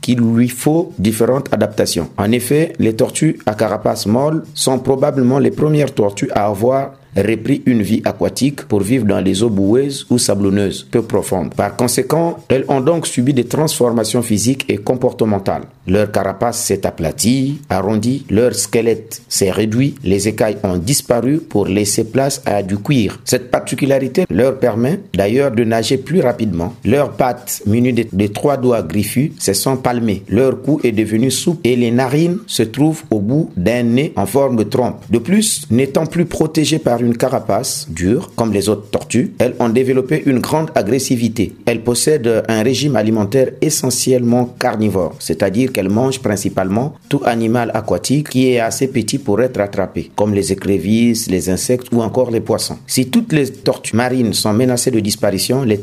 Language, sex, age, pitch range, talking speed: French, male, 50-69, 110-135 Hz, 170 wpm